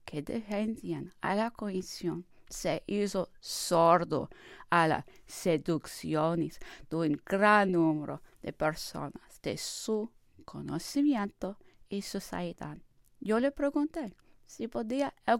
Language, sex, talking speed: English, female, 110 wpm